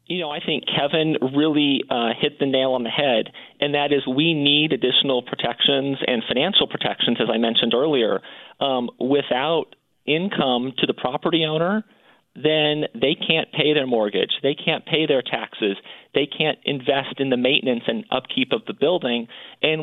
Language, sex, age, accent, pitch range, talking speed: English, male, 40-59, American, 130-150 Hz, 170 wpm